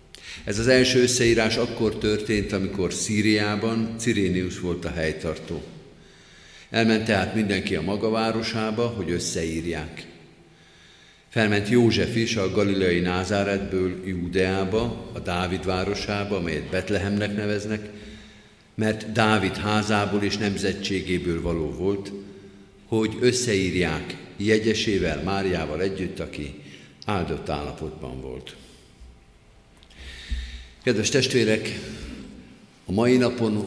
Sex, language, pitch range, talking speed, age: male, Hungarian, 90-110 Hz, 95 wpm, 50-69